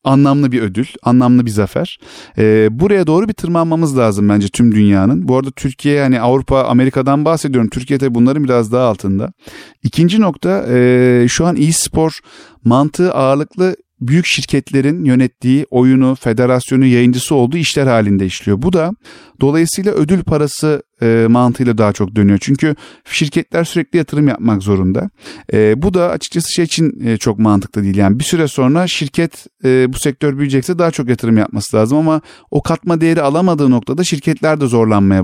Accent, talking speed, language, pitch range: native, 160 wpm, Turkish, 115-150 Hz